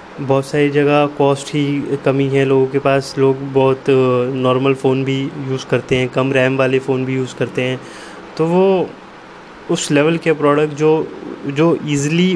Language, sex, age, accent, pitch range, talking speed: Hindi, male, 20-39, native, 135-150 Hz, 170 wpm